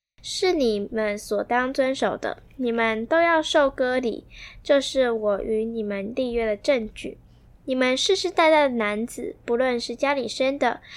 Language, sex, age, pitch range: Chinese, female, 10-29, 225-275 Hz